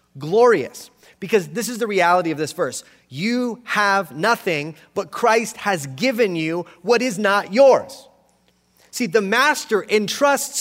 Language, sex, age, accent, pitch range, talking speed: English, male, 30-49, American, 150-220 Hz, 140 wpm